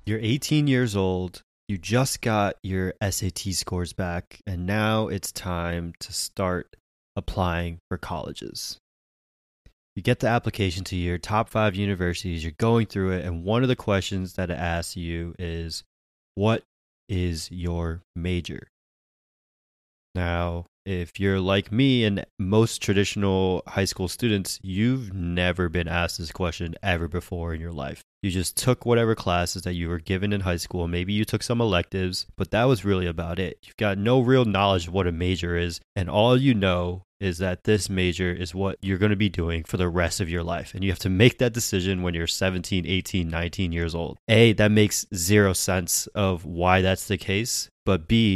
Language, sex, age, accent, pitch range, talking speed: English, male, 20-39, American, 85-105 Hz, 185 wpm